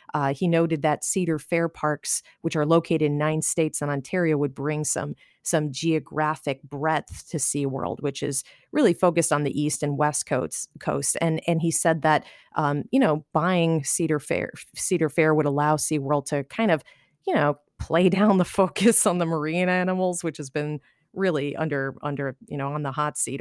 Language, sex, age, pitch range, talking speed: English, female, 30-49, 145-180 Hz, 195 wpm